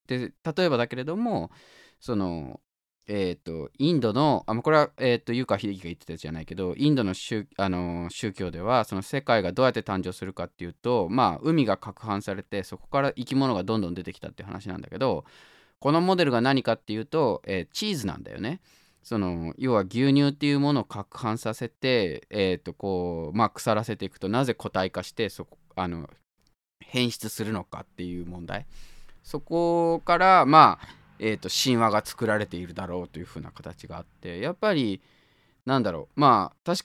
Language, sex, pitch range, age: Japanese, male, 90-140 Hz, 20-39